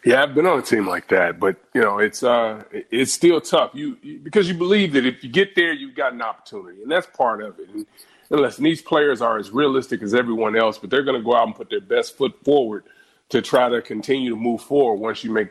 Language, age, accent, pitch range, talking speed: English, 30-49, American, 120-170 Hz, 260 wpm